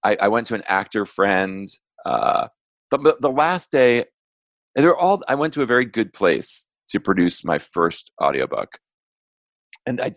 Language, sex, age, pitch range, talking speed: English, male, 40-59, 100-130 Hz, 170 wpm